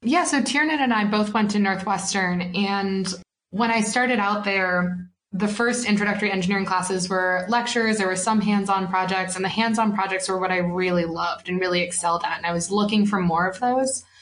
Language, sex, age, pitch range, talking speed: English, female, 20-39, 185-210 Hz, 205 wpm